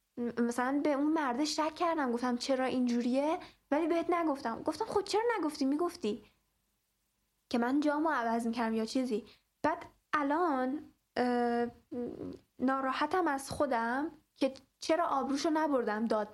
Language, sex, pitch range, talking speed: Persian, female, 230-290 Hz, 130 wpm